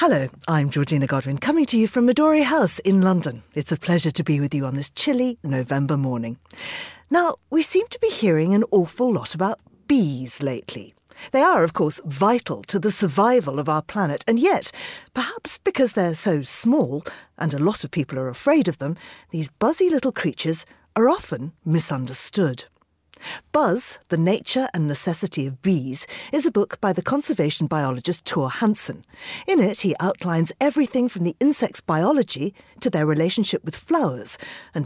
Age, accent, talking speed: 40-59, British, 175 wpm